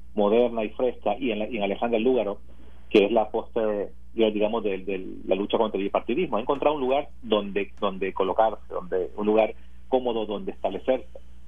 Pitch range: 95-130 Hz